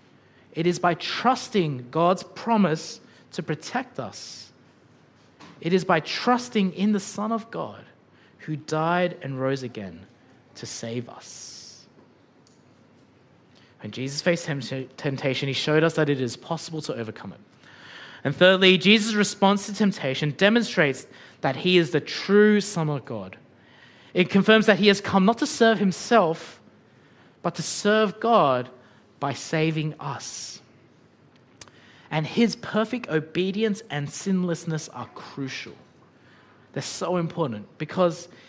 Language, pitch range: English, 140-205 Hz